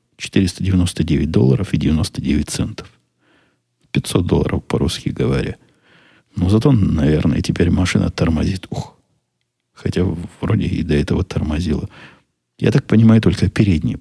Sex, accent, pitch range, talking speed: male, native, 85-105 Hz, 115 wpm